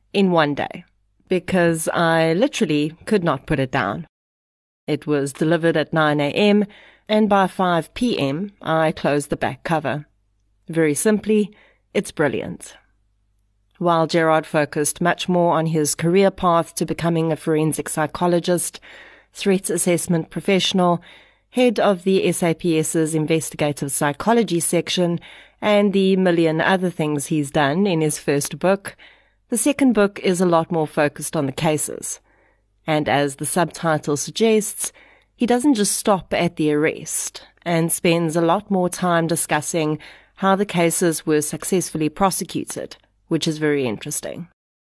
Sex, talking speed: female, 140 wpm